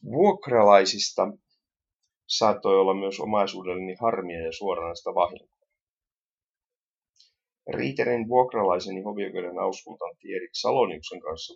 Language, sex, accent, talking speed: Finnish, male, native, 85 wpm